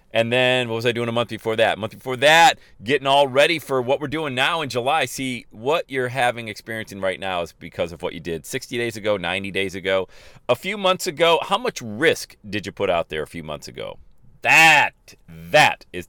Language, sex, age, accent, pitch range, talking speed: English, male, 40-59, American, 90-125 Hz, 230 wpm